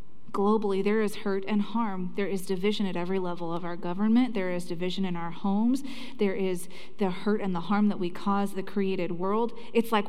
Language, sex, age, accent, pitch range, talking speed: English, female, 30-49, American, 190-235 Hz, 215 wpm